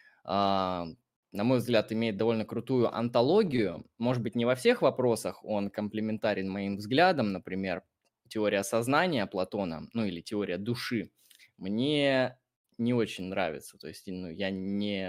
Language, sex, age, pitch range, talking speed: Russian, male, 20-39, 100-120 Hz, 140 wpm